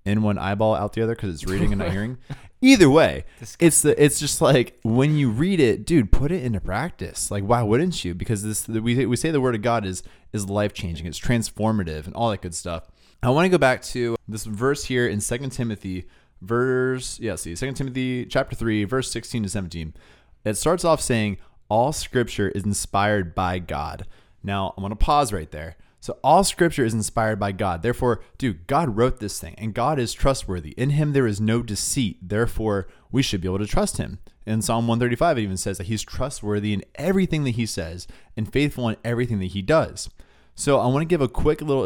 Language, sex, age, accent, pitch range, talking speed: English, male, 20-39, American, 100-130 Hz, 220 wpm